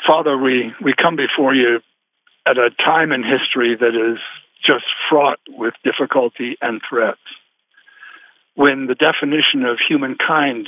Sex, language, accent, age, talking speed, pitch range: male, English, American, 60-79, 135 wpm, 125-160 Hz